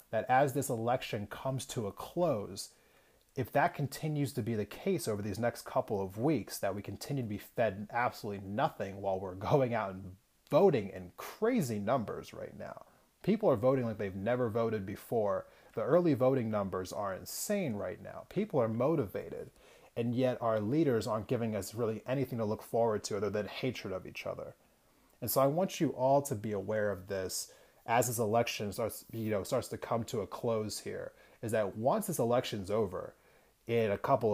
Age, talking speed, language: 30-49, 190 wpm, English